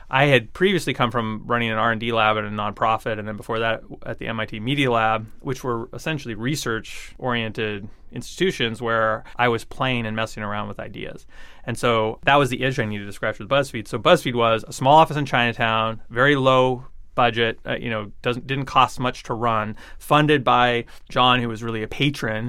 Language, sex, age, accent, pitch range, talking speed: English, male, 30-49, American, 115-130 Hz, 205 wpm